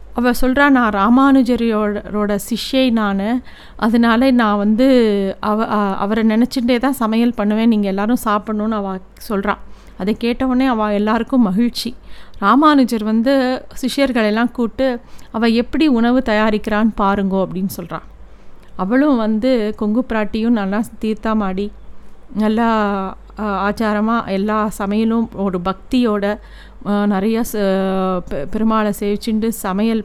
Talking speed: 100 wpm